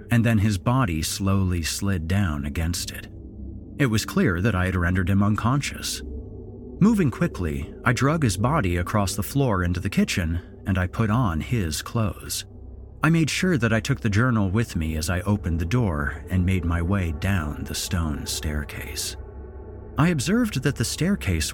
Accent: American